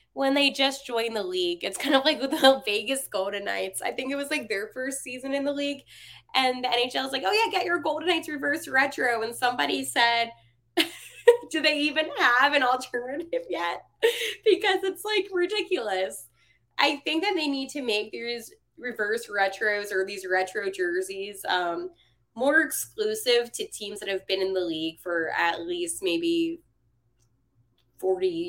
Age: 20-39